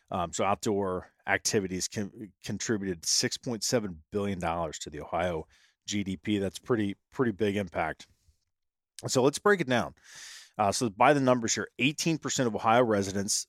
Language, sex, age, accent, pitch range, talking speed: English, male, 30-49, American, 95-115 Hz, 140 wpm